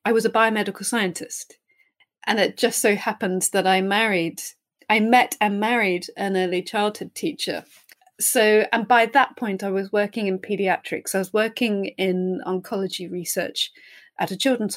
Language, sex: English, female